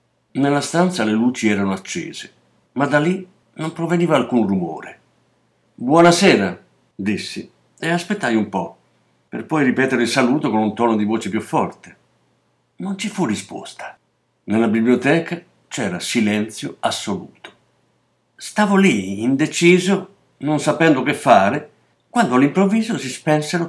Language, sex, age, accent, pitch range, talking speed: Italian, male, 50-69, native, 115-160 Hz, 130 wpm